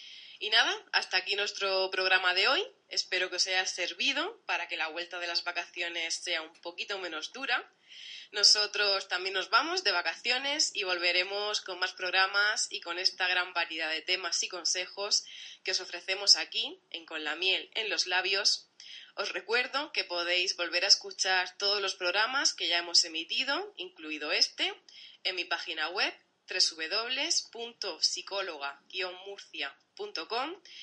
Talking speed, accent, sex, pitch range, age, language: 150 wpm, Spanish, female, 175-235 Hz, 20-39, Spanish